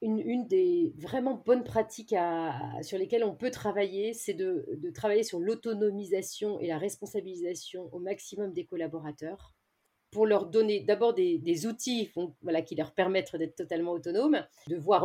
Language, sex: French, female